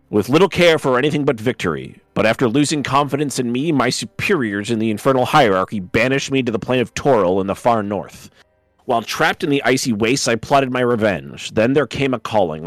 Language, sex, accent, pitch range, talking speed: English, male, American, 105-130 Hz, 215 wpm